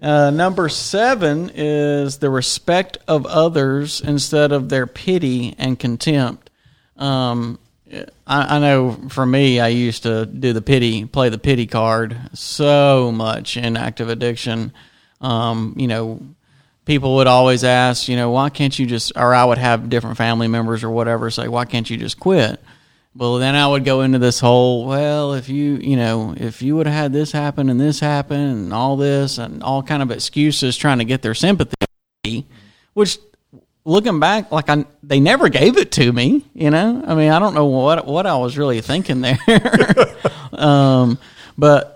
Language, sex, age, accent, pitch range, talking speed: English, male, 40-59, American, 120-145 Hz, 180 wpm